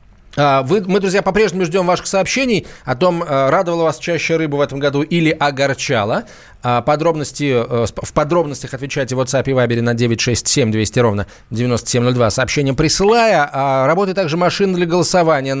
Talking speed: 145 wpm